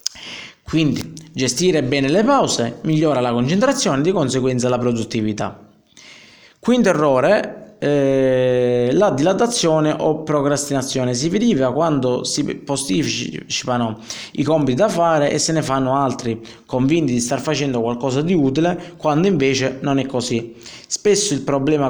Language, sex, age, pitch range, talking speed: Italian, male, 20-39, 125-155 Hz, 135 wpm